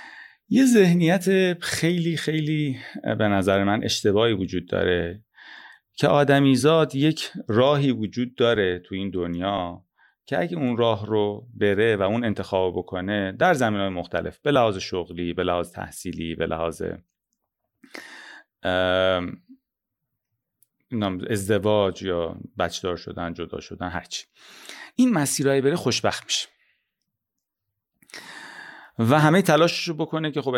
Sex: male